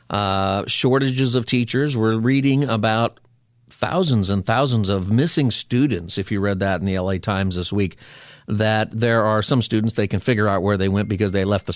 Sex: male